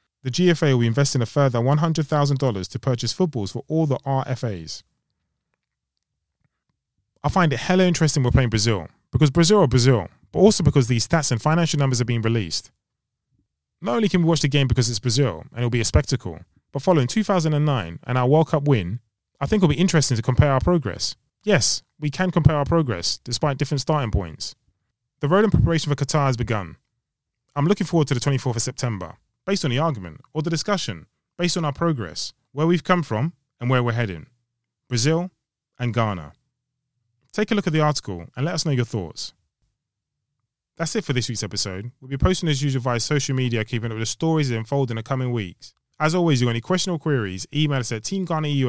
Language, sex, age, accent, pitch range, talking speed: English, male, 20-39, British, 115-155 Hz, 205 wpm